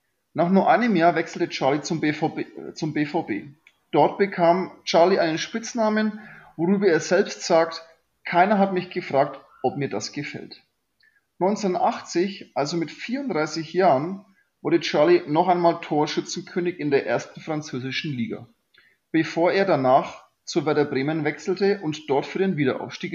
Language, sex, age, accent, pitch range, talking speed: German, male, 30-49, German, 145-185 Hz, 140 wpm